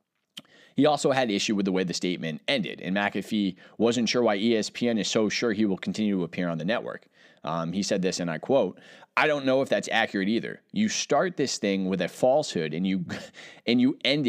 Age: 30-49